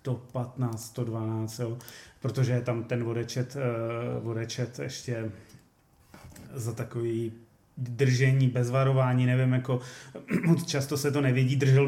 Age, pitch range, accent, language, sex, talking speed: 30-49, 120-140 Hz, native, Czech, male, 115 wpm